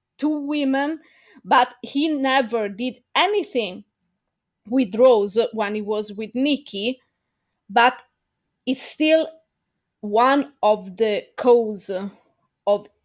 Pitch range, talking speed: 215-270 Hz, 100 wpm